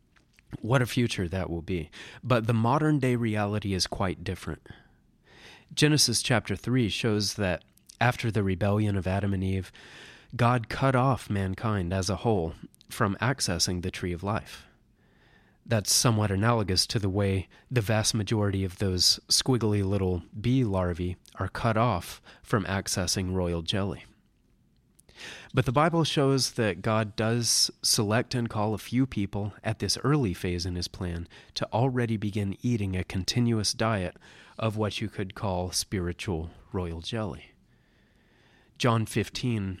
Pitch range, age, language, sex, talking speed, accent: 95-120 Hz, 30-49, English, male, 150 wpm, American